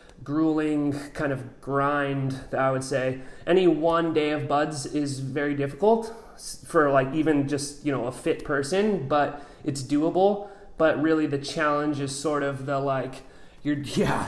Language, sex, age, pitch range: English, male, 30-49, 135-160 Hz